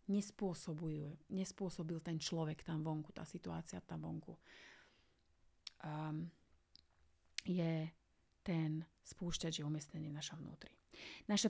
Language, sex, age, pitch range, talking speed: Slovak, female, 30-49, 155-195 Hz, 100 wpm